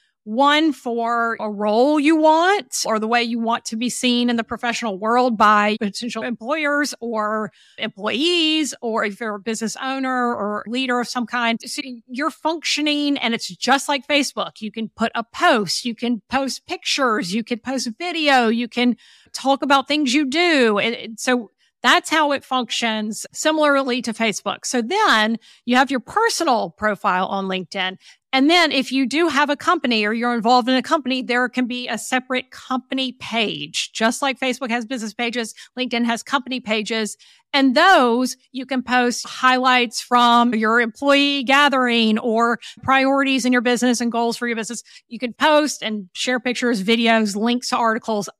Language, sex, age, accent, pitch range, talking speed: English, female, 50-69, American, 225-275 Hz, 175 wpm